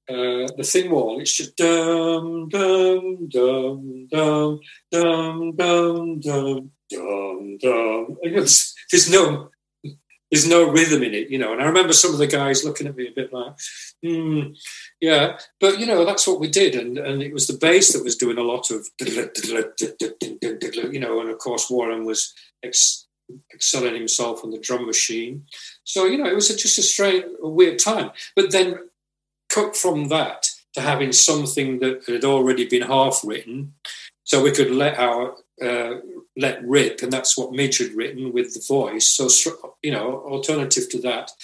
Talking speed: 160 wpm